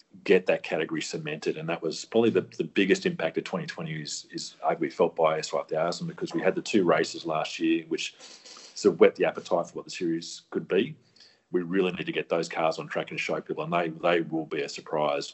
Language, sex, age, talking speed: English, male, 40-59, 245 wpm